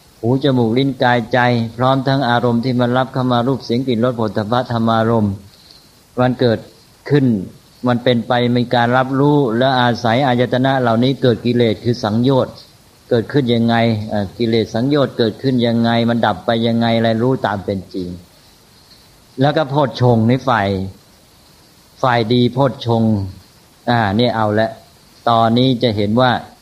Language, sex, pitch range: English, male, 110-125 Hz